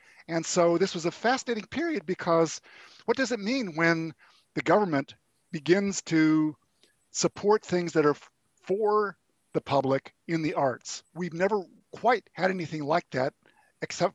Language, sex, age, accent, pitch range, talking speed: English, male, 50-69, American, 145-190 Hz, 150 wpm